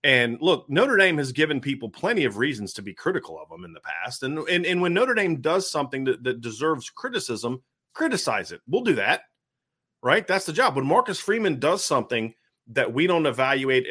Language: English